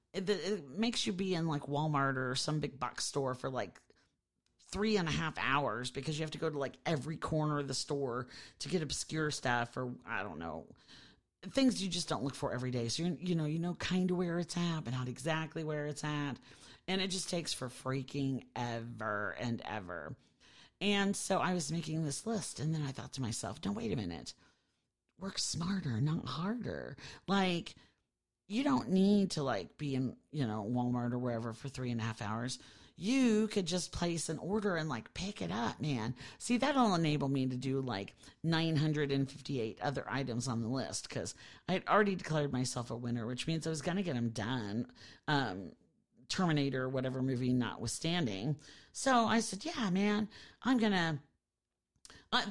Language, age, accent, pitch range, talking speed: English, 40-59, American, 130-185 Hz, 195 wpm